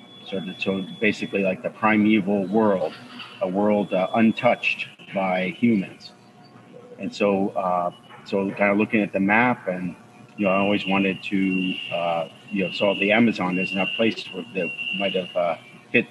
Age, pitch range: 40-59, 95-105 Hz